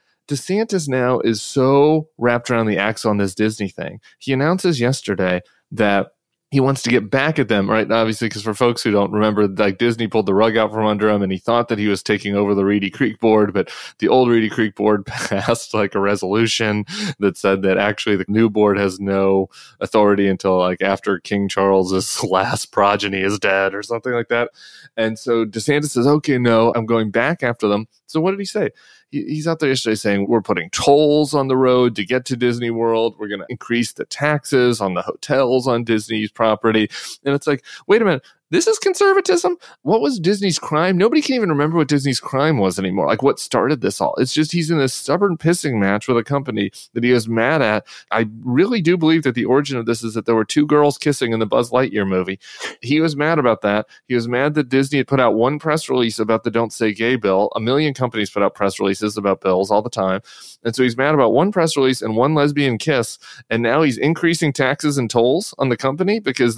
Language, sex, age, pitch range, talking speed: English, male, 20-39, 105-145 Hz, 225 wpm